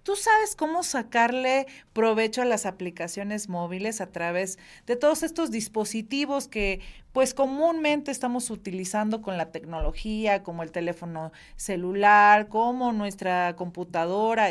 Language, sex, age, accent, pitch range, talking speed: Spanish, female, 40-59, Mexican, 205-260 Hz, 125 wpm